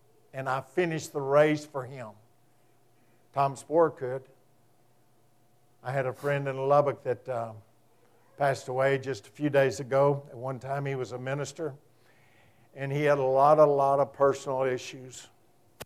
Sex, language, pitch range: male, English, 130-160 Hz